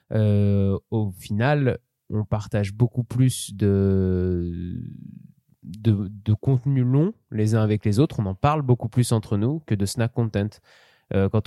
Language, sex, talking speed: French, male, 155 wpm